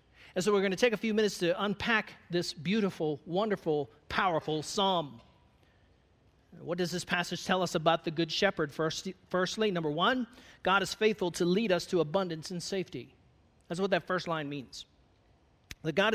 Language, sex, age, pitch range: English, male, 40-59, 165-215 Hz